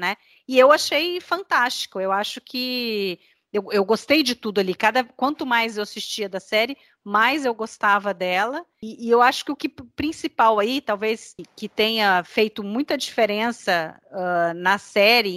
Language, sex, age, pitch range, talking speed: Portuguese, female, 30-49, 195-245 Hz, 170 wpm